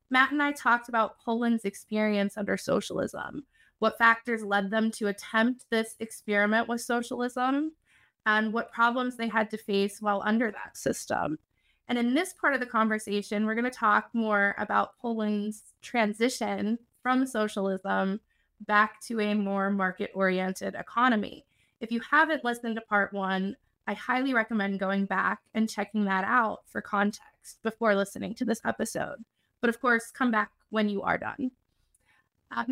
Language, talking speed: English, 160 wpm